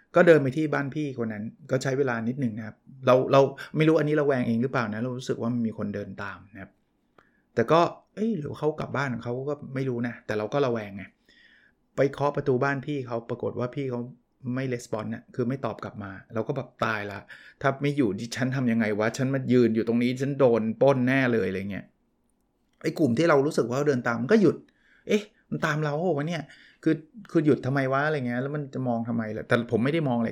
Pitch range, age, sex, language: 115-145 Hz, 20-39, male, Thai